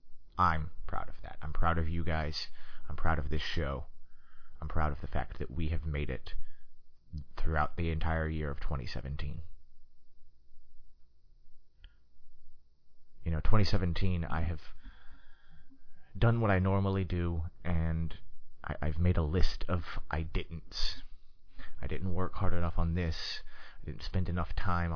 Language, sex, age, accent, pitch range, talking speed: English, male, 30-49, American, 75-90 Hz, 145 wpm